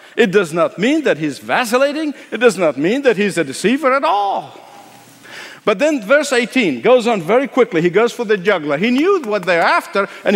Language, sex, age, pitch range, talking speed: English, male, 50-69, 185-255 Hz, 210 wpm